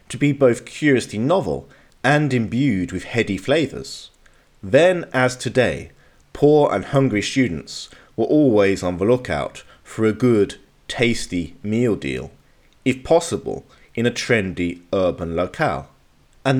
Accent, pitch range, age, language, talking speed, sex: British, 90-125 Hz, 40-59, English, 130 wpm, male